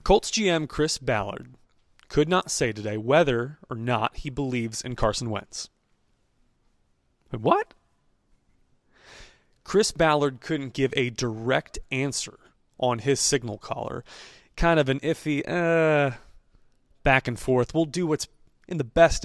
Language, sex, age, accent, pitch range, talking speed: English, male, 30-49, American, 115-155 Hz, 135 wpm